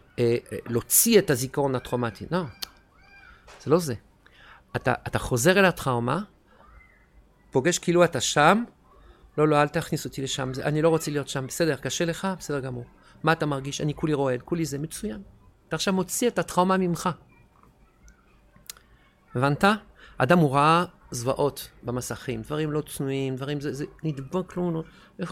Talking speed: 155 wpm